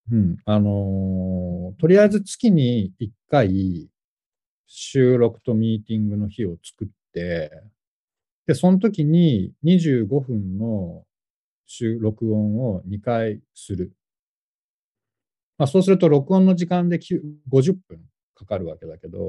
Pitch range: 105-160 Hz